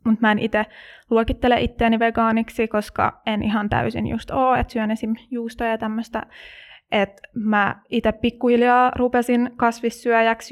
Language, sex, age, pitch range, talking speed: Finnish, female, 20-39, 215-235 Hz, 135 wpm